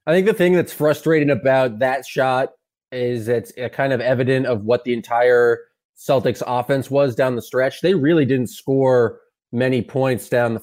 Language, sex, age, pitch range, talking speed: English, male, 20-39, 120-145 Hz, 180 wpm